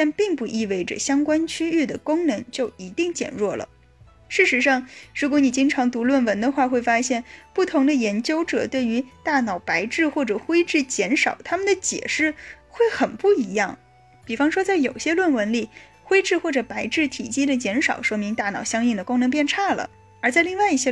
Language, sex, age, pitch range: Chinese, female, 10-29, 230-330 Hz